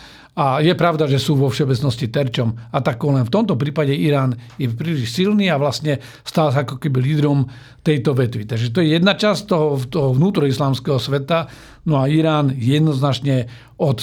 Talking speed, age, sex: 175 wpm, 50-69, male